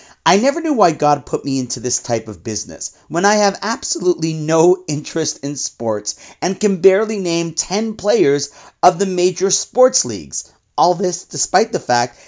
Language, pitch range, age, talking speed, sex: English, 125-185 Hz, 40-59, 175 wpm, male